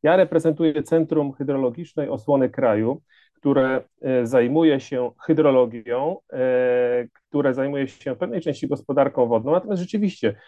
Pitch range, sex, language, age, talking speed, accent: 120-160 Hz, male, Polish, 40-59, 120 wpm, native